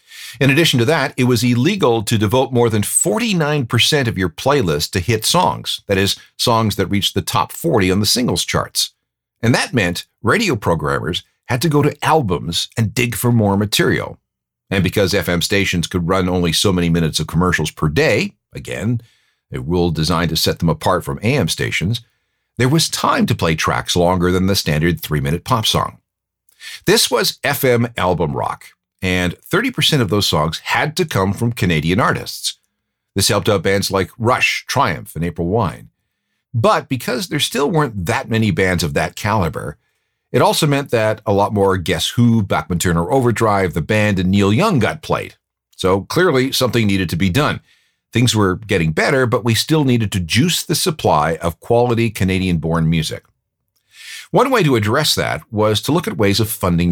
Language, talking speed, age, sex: English, 185 wpm, 50-69, male